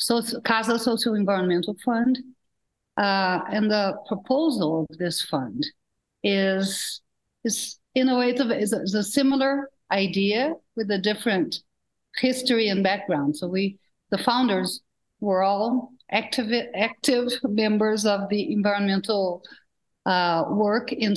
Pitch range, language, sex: 195-245 Hz, English, female